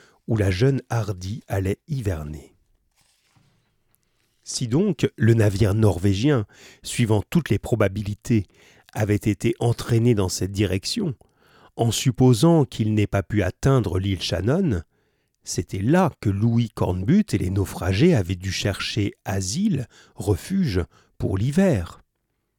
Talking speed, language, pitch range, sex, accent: 120 wpm, French, 100-135 Hz, male, French